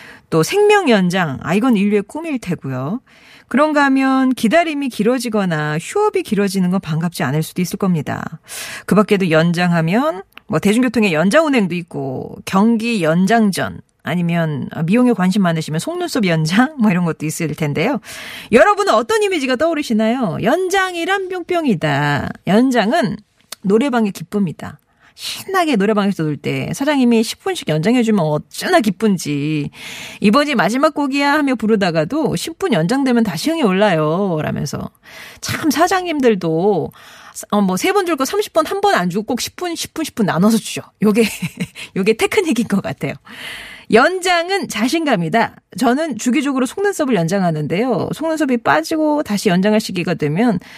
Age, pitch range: 40-59, 180-275 Hz